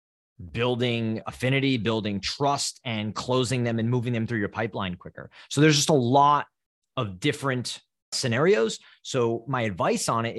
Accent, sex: American, male